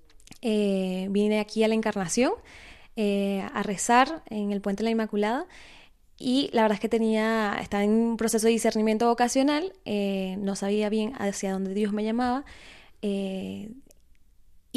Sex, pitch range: female, 200-235 Hz